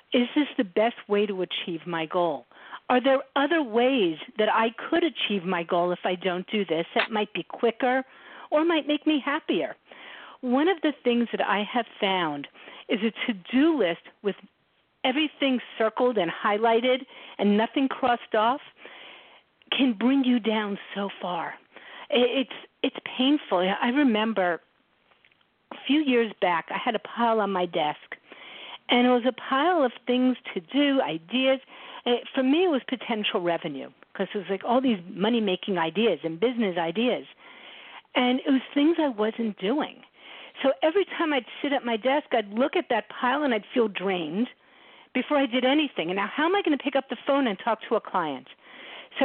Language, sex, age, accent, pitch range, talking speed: English, female, 50-69, American, 210-275 Hz, 180 wpm